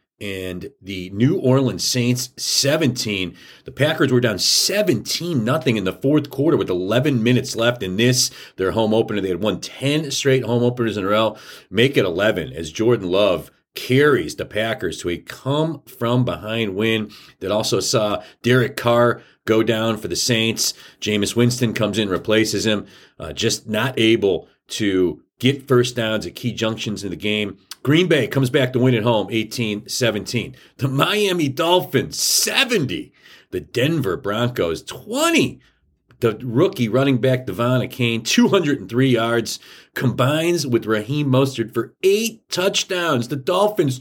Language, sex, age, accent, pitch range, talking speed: English, male, 40-59, American, 110-145 Hz, 150 wpm